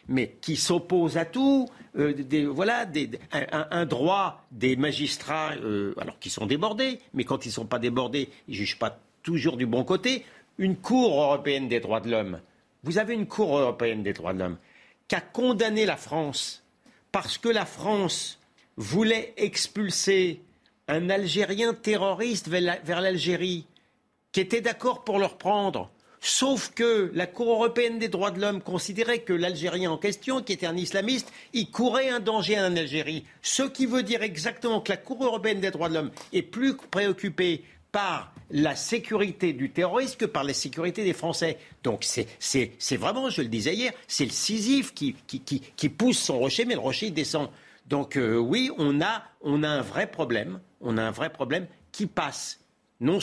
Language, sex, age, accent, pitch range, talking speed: French, male, 50-69, French, 145-225 Hz, 190 wpm